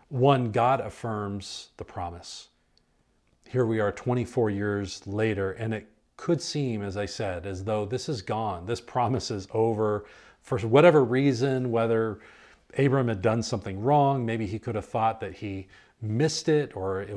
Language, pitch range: English, 105-130 Hz